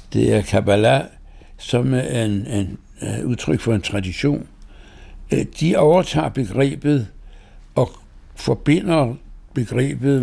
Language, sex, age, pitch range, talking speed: Danish, male, 60-79, 100-125 Hz, 105 wpm